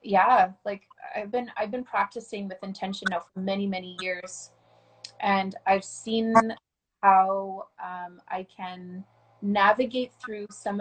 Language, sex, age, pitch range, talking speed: English, female, 20-39, 195-230 Hz, 135 wpm